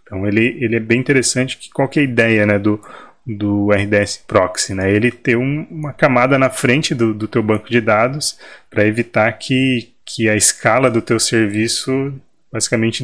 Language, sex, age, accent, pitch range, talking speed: Portuguese, male, 20-39, Brazilian, 105-120 Hz, 180 wpm